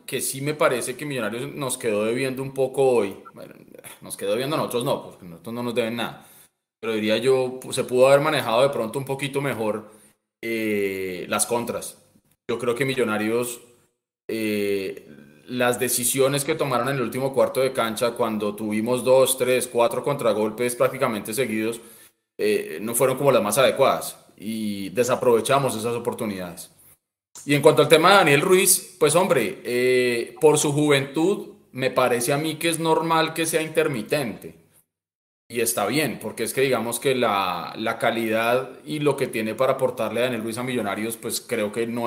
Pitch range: 110-135 Hz